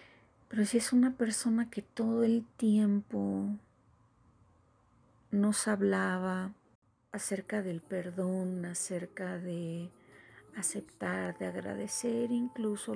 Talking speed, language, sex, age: 95 wpm, Spanish, female, 40-59